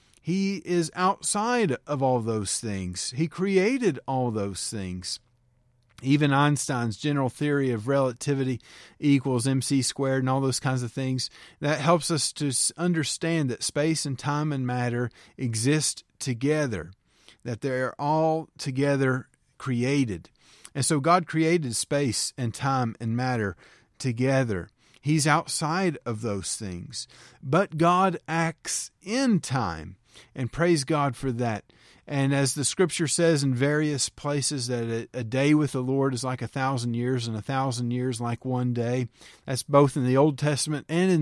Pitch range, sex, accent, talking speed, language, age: 120-155 Hz, male, American, 155 wpm, English, 40-59